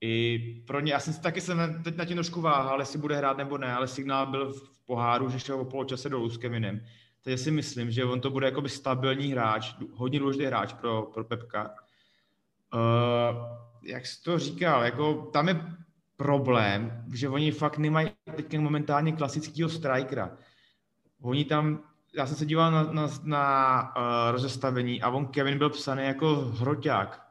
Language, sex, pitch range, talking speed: Czech, male, 120-145 Hz, 175 wpm